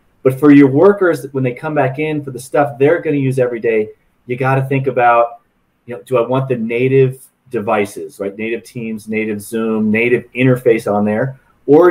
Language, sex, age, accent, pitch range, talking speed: English, male, 30-49, American, 115-140 Hz, 205 wpm